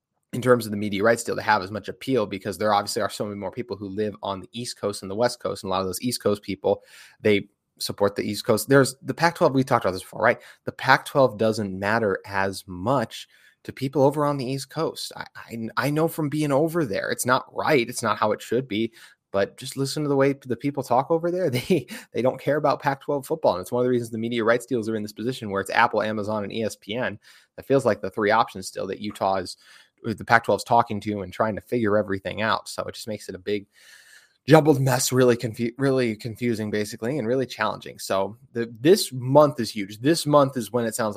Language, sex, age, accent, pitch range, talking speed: English, male, 20-39, American, 105-130 Hz, 250 wpm